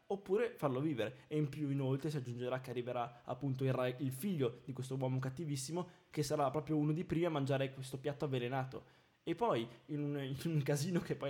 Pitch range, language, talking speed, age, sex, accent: 130-165 Hz, Italian, 210 wpm, 20-39, male, native